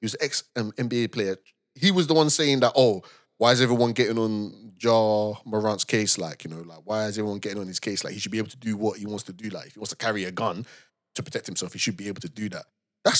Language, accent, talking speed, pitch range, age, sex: English, British, 280 wpm, 110-155 Hz, 20-39, male